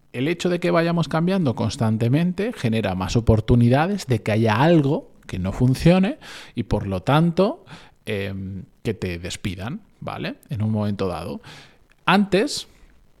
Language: Spanish